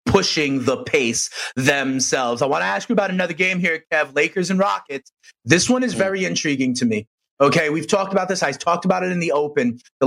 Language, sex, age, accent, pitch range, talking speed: English, male, 30-49, American, 155-235 Hz, 220 wpm